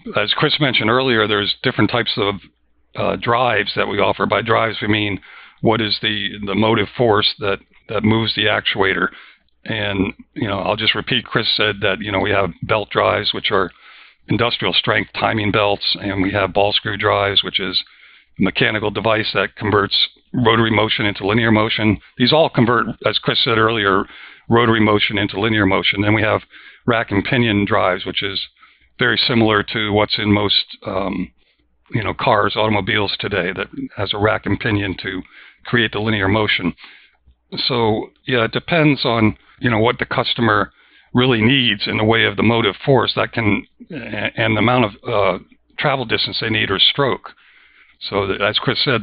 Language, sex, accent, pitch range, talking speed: English, male, American, 100-120 Hz, 180 wpm